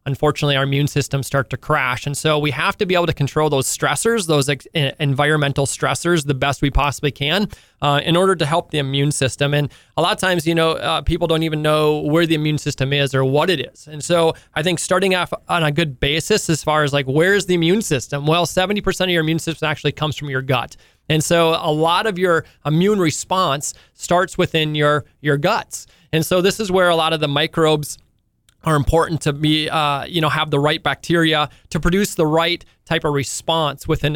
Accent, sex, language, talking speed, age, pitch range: American, male, English, 220 wpm, 20-39, 140-165 Hz